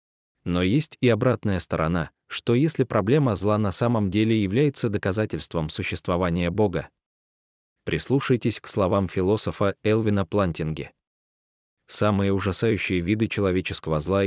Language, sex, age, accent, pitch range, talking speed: Russian, male, 20-39, native, 90-115 Hz, 115 wpm